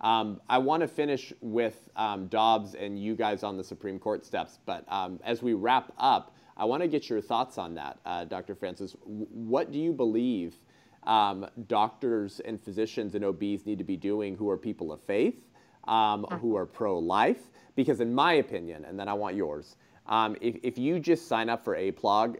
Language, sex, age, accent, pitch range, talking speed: English, male, 30-49, American, 100-120 Hz, 200 wpm